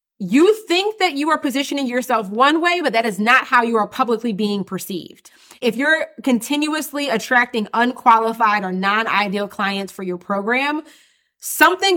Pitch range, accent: 200-250 Hz, American